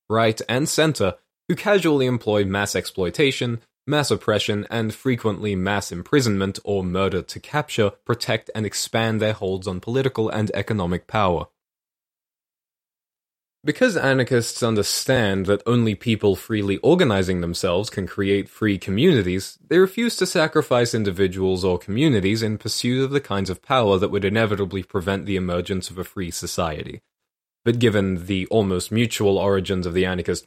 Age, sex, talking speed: 20-39, male, 145 wpm